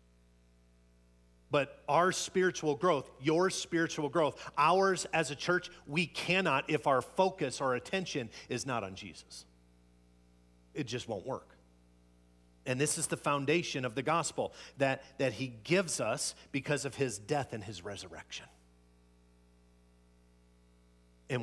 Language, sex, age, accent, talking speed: English, male, 40-59, American, 130 wpm